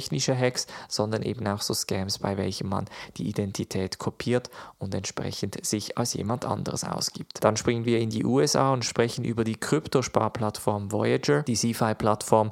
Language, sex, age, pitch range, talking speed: German, male, 20-39, 105-125 Hz, 165 wpm